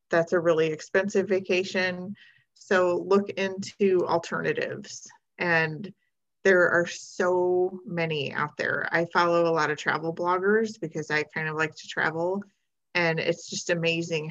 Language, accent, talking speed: English, American, 145 wpm